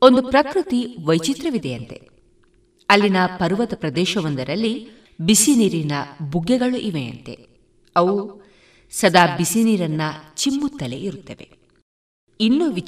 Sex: female